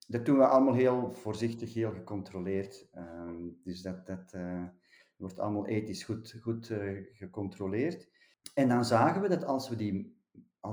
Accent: Dutch